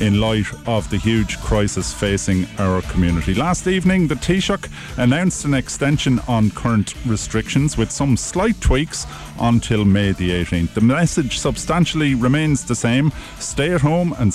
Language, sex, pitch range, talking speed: English, male, 95-125 Hz, 155 wpm